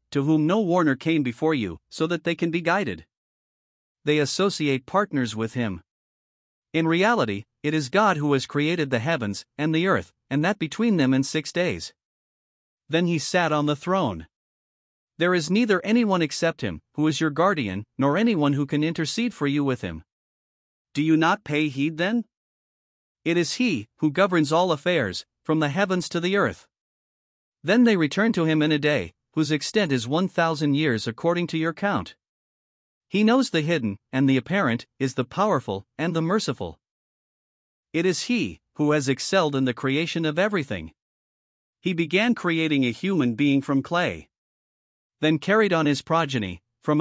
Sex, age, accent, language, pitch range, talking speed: male, 50-69, American, English, 140-180 Hz, 175 wpm